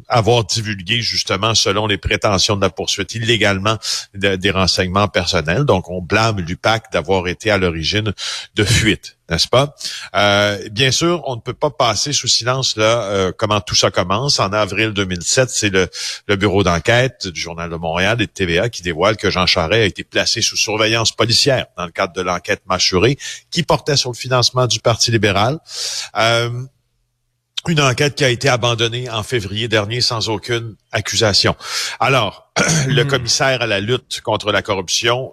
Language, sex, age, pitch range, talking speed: French, male, 50-69, 95-120 Hz, 175 wpm